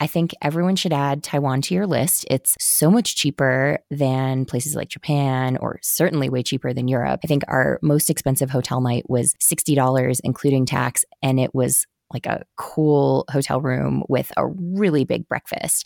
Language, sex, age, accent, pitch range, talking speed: English, female, 20-39, American, 130-155 Hz, 180 wpm